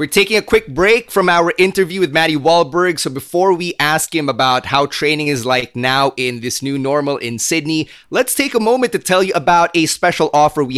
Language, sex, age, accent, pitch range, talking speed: English, male, 30-49, Filipino, 145-185 Hz, 225 wpm